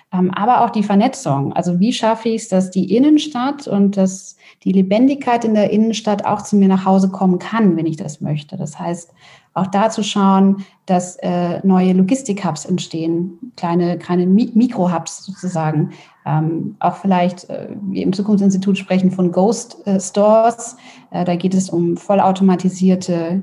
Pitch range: 180-215 Hz